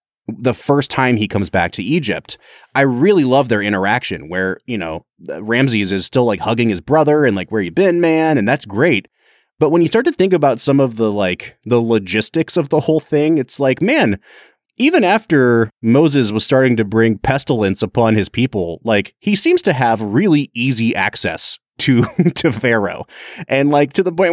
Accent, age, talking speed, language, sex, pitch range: American, 30-49, 195 wpm, English, male, 105-150 Hz